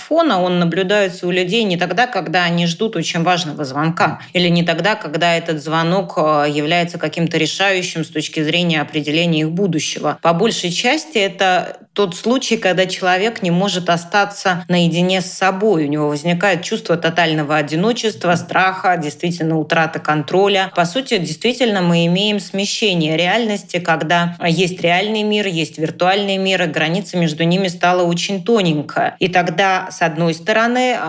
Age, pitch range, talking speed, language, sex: 20-39, 170-205 Hz, 150 wpm, Russian, female